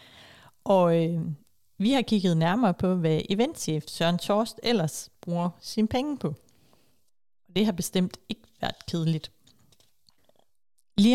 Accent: native